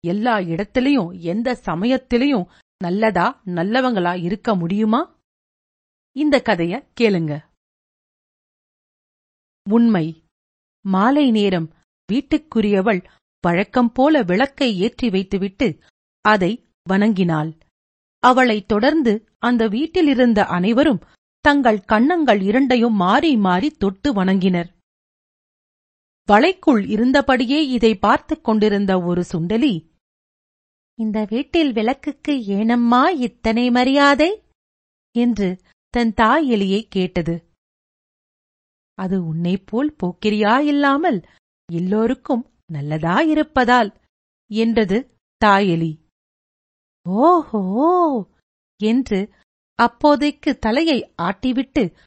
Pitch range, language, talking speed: 190-265 Hz, Tamil, 70 wpm